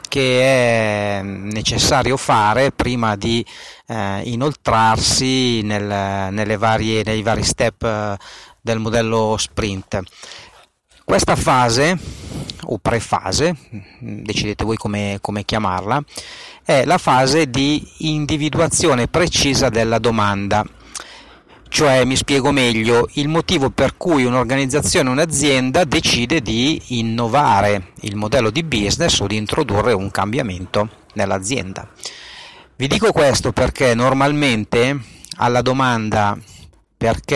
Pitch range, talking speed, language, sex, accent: 105-135 Hz, 100 wpm, Italian, male, native